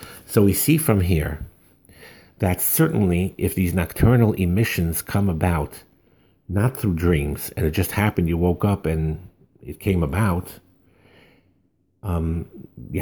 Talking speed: 135 wpm